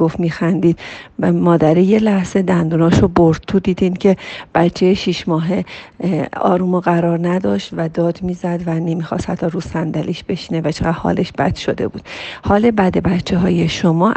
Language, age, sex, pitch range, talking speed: Persian, 40-59, female, 170-210 Hz, 155 wpm